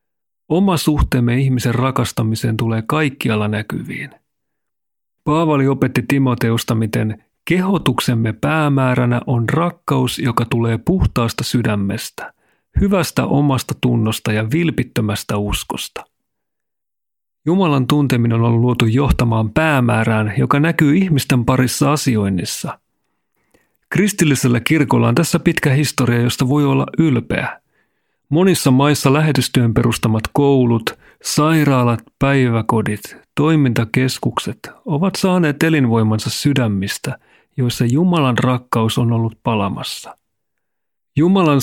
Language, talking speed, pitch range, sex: Finnish, 95 wpm, 115-145 Hz, male